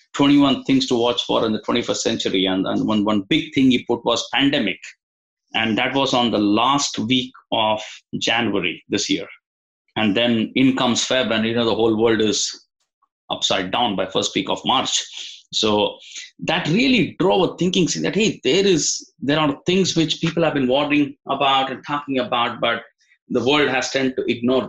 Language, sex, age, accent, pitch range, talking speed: English, male, 20-39, Indian, 125-165 Hz, 190 wpm